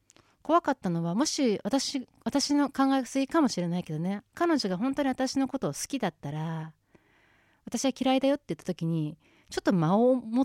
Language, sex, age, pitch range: Japanese, female, 30-49, 175-270 Hz